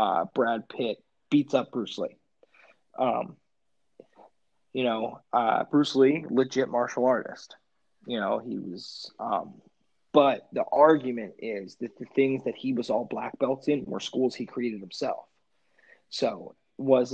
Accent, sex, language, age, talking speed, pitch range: American, male, English, 20-39, 145 wpm, 125-140 Hz